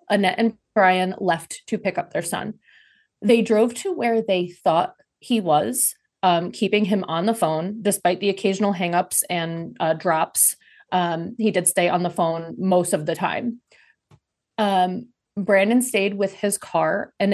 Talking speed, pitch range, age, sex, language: 165 wpm, 180-220 Hz, 30-49, female, English